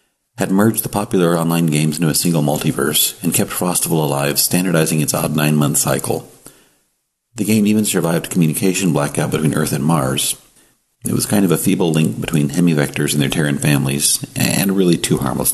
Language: English